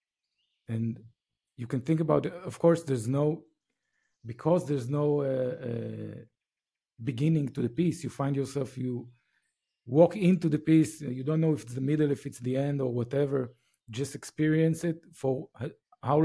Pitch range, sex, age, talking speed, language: 125-160 Hz, male, 50-69, 165 wpm, English